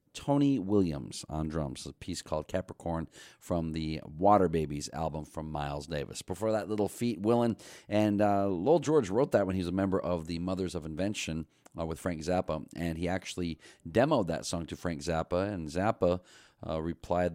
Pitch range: 80-100 Hz